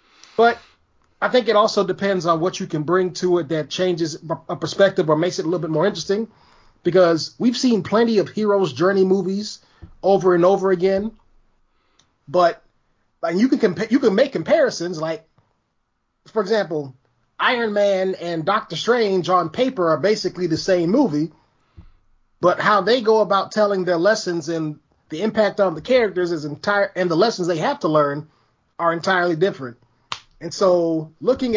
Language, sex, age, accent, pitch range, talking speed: English, male, 30-49, American, 155-200 Hz, 165 wpm